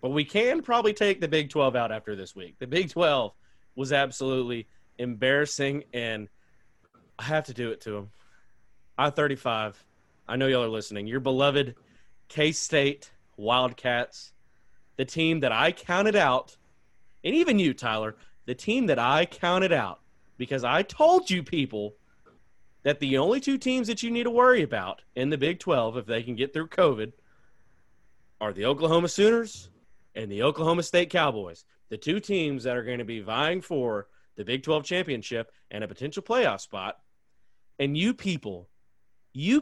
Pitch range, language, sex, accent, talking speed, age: 125-190 Hz, English, male, American, 165 wpm, 30-49